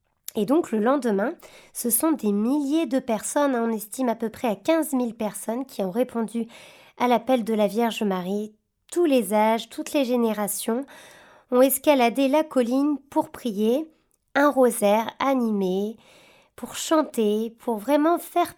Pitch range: 215-270 Hz